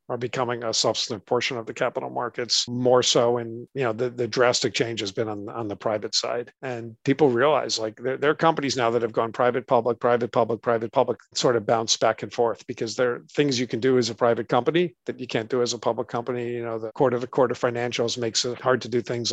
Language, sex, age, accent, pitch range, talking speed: English, male, 50-69, American, 115-125 Hz, 260 wpm